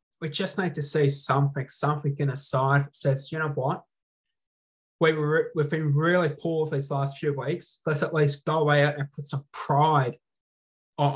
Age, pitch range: 20-39, 140-195 Hz